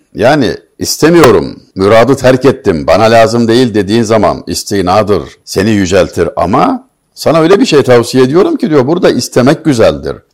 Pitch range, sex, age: 105-140 Hz, male, 60-79